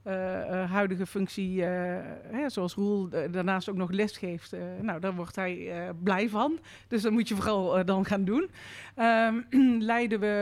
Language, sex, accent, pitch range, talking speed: Dutch, female, Dutch, 185-225 Hz, 190 wpm